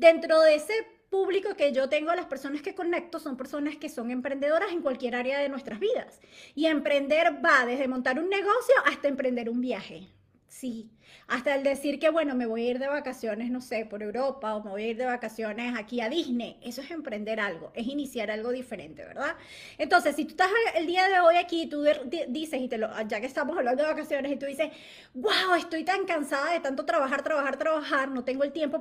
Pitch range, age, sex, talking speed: 255-320 Hz, 20-39, female, 210 wpm